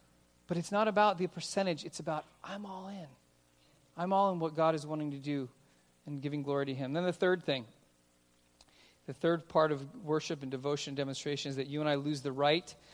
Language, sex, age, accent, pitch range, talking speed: English, male, 40-59, American, 140-175 Hz, 210 wpm